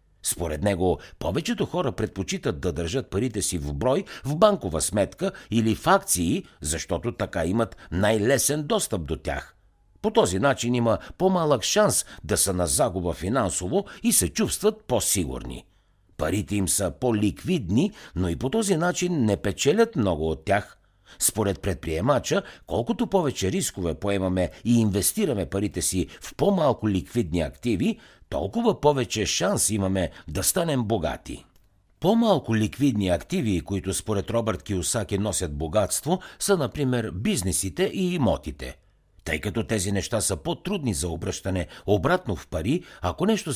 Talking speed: 140 wpm